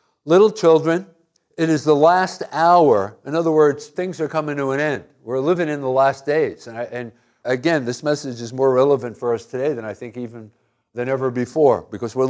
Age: 60-79